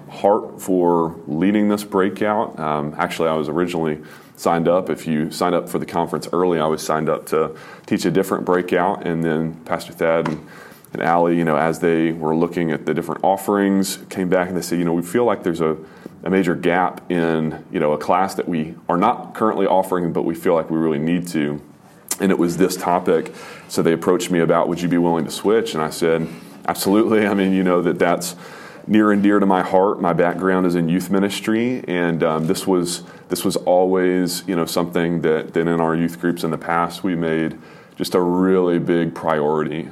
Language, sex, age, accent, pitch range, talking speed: English, male, 30-49, American, 80-90 Hz, 215 wpm